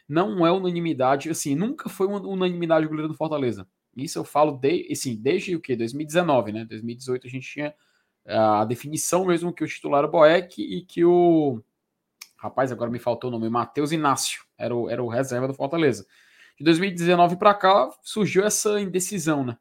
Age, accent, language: 20-39, Brazilian, Portuguese